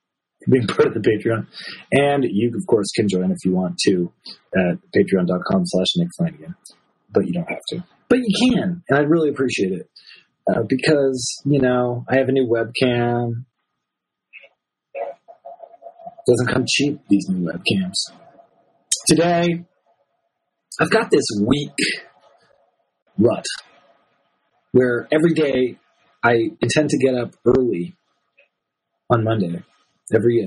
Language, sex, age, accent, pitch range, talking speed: English, male, 30-49, American, 110-160 Hz, 125 wpm